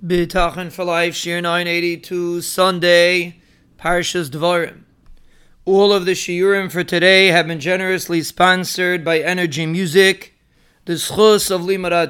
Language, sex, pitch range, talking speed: English, male, 170-190 Hz, 125 wpm